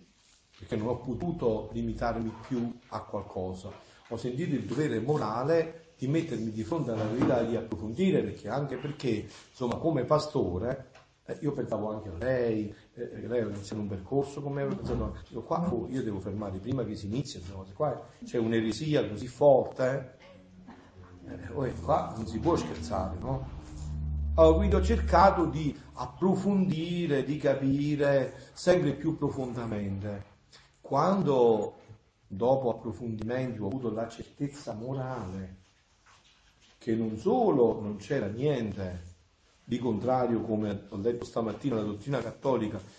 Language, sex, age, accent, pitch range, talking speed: Italian, male, 40-59, native, 100-135 Hz, 140 wpm